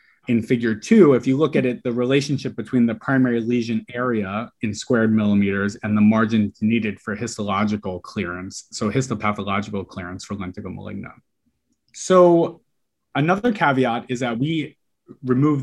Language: English